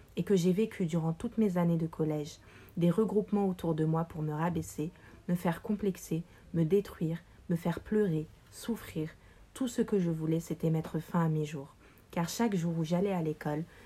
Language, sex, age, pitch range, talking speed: French, female, 40-59, 160-195 Hz, 195 wpm